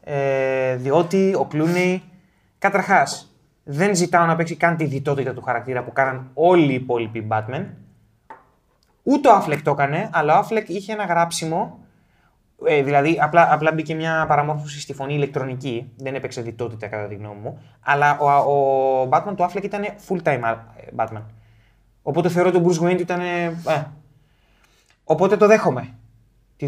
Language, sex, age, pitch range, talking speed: Greek, male, 20-39, 125-180 Hz, 150 wpm